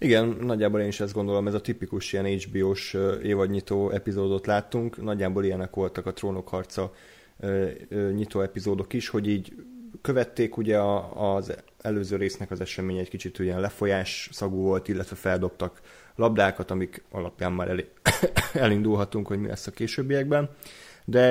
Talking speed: 140 wpm